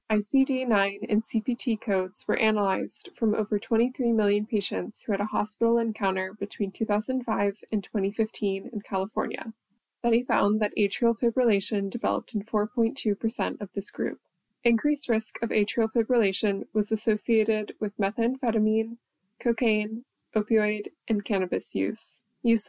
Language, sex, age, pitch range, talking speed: English, female, 20-39, 205-235 Hz, 130 wpm